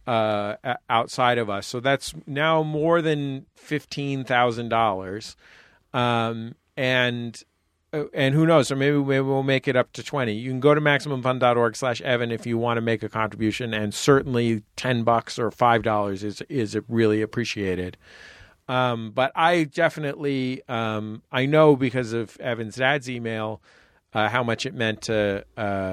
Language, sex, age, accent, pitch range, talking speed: English, male, 40-59, American, 105-130 Hz, 155 wpm